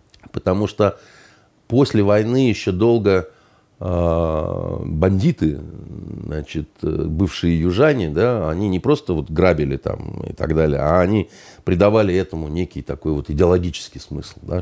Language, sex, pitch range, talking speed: Russian, male, 80-95 Hz, 125 wpm